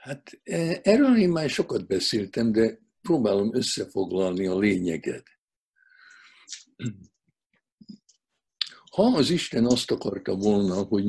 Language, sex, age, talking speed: Hungarian, male, 60-79, 95 wpm